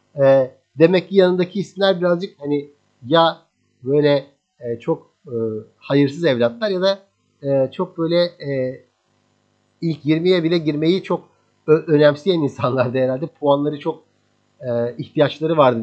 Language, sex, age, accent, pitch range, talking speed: Turkish, male, 50-69, native, 130-170 Hz, 100 wpm